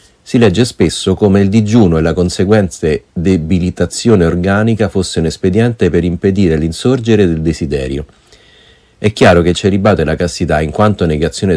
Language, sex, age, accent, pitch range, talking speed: Italian, male, 40-59, native, 85-110 Hz, 145 wpm